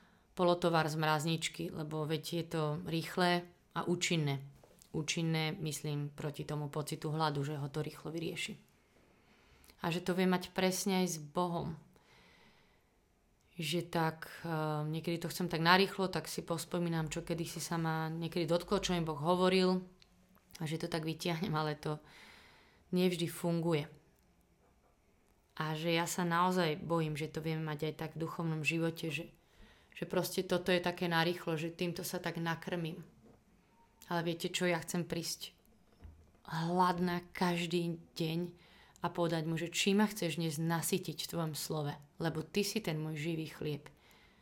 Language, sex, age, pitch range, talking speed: Slovak, female, 30-49, 160-180 Hz, 155 wpm